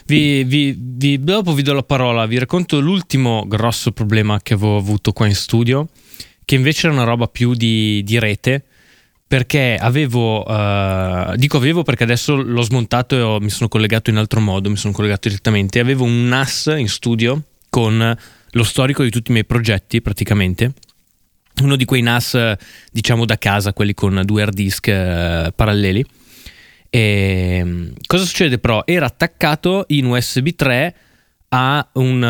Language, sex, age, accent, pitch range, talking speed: Italian, male, 20-39, native, 105-130 Hz, 150 wpm